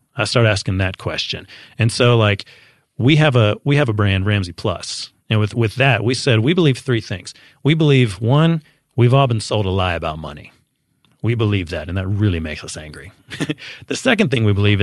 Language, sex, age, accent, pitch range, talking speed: English, male, 30-49, American, 100-130 Hz, 210 wpm